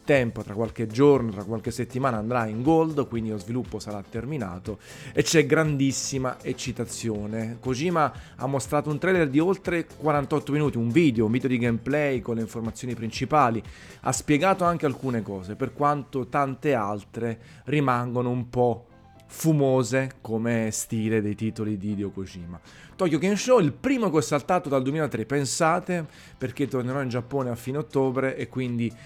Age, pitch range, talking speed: 30-49, 115-140 Hz, 155 wpm